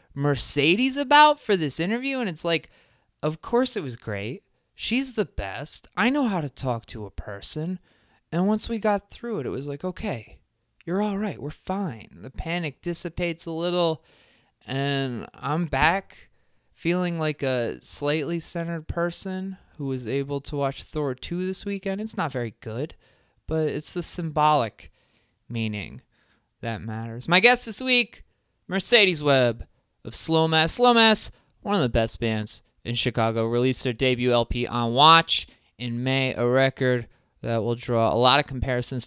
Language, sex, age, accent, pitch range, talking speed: English, male, 20-39, American, 125-170 Hz, 165 wpm